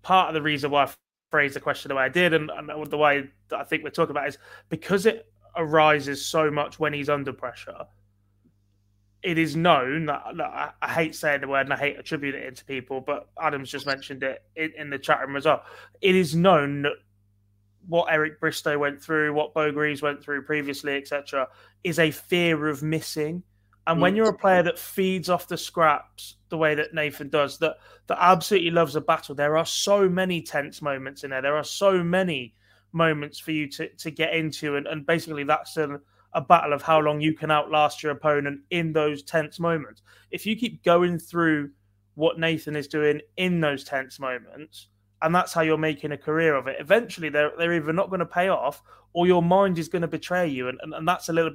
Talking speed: 220 wpm